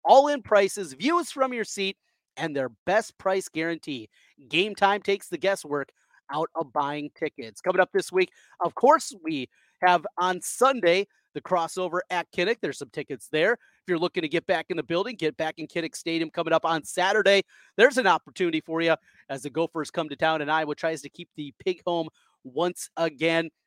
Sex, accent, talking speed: male, American, 195 wpm